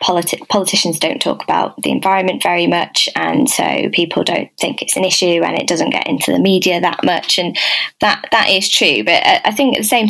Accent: British